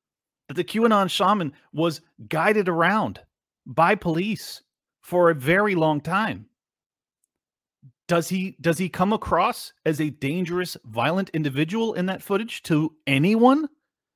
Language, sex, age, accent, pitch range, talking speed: English, male, 40-59, American, 155-205 Hz, 125 wpm